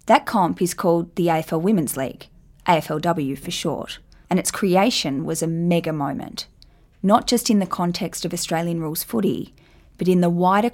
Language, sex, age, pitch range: English, female, 20-39, 165-190 Hz